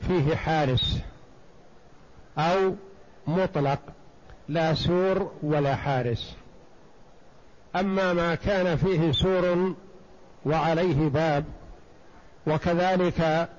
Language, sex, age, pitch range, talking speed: Arabic, male, 60-79, 160-190 Hz, 70 wpm